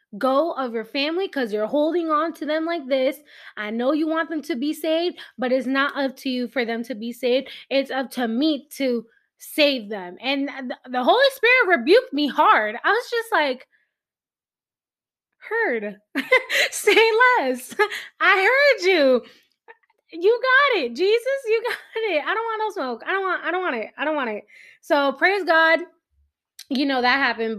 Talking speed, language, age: 185 wpm, English, 20-39